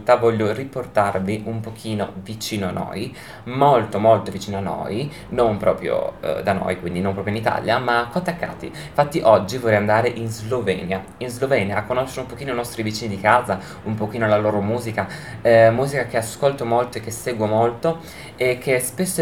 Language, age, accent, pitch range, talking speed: Italian, 20-39, native, 100-120 Hz, 180 wpm